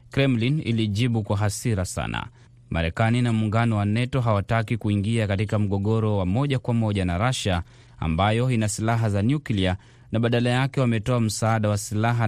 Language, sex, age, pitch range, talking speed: Swahili, male, 30-49, 100-120 Hz, 155 wpm